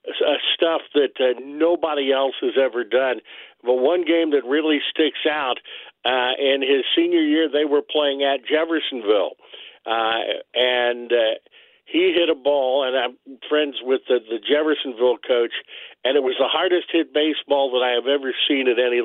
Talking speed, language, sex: 170 wpm, English, male